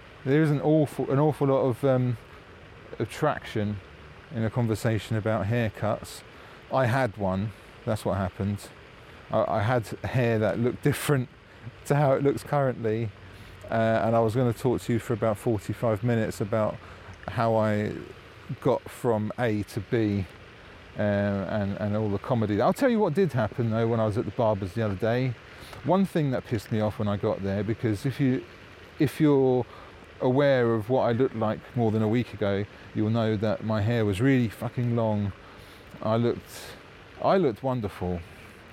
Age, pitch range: 30-49, 105-130 Hz